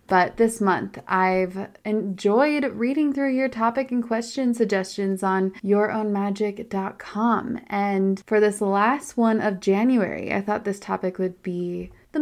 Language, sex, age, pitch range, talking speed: English, female, 20-39, 190-230 Hz, 140 wpm